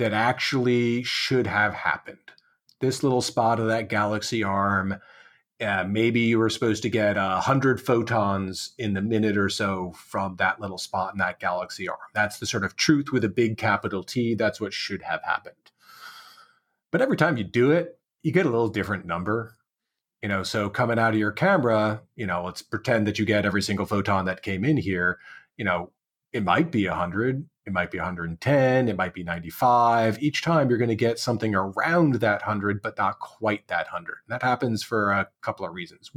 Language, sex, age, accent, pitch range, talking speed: English, male, 40-59, American, 100-120 Hz, 200 wpm